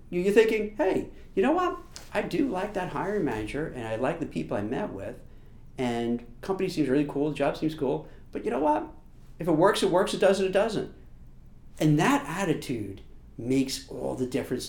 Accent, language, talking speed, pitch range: American, English, 205 wpm, 130-200 Hz